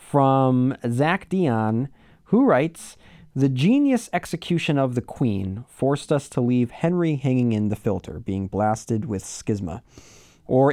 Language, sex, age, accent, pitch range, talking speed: English, male, 30-49, American, 100-130 Hz, 140 wpm